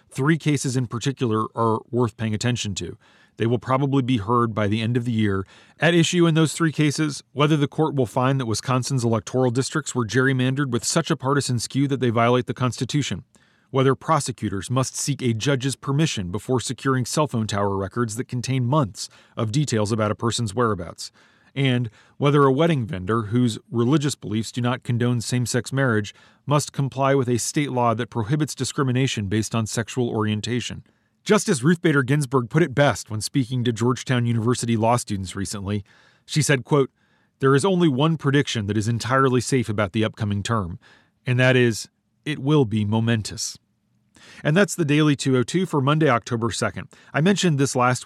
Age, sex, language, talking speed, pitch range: 40-59, male, English, 185 wpm, 115-140 Hz